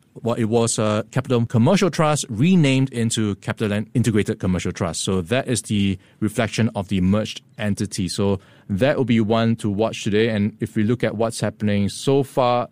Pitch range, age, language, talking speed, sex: 105-135 Hz, 20-39, English, 195 wpm, male